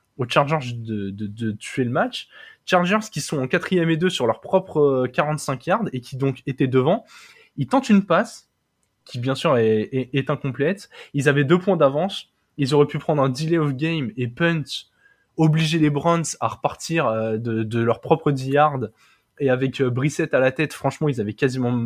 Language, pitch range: French, 130-175 Hz